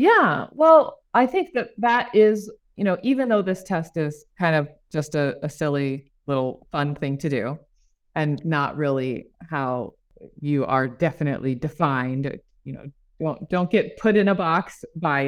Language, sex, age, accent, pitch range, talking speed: English, female, 30-49, American, 150-190 Hz, 170 wpm